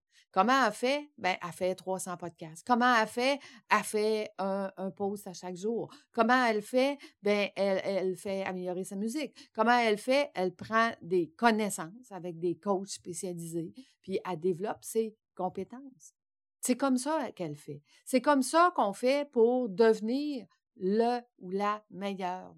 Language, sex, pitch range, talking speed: French, female, 180-230 Hz, 160 wpm